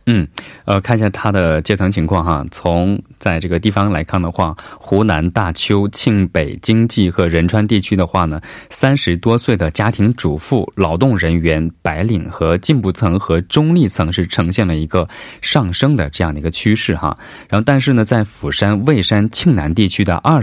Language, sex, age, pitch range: Korean, male, 20-39, 85-115 Hz